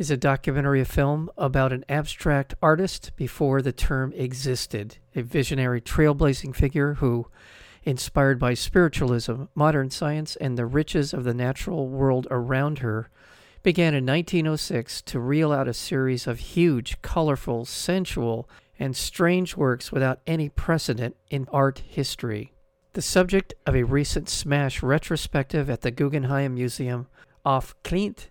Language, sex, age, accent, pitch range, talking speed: English, male, 50-69, American, 130-155 Hz, 140 wpm